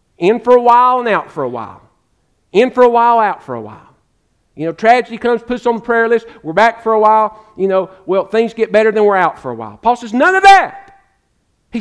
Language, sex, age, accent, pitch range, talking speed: English, male, 50-69, American, 205-255 Hz, 250 wpm